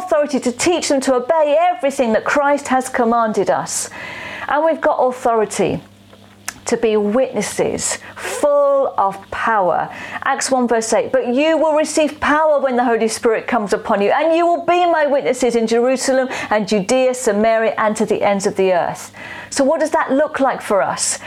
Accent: British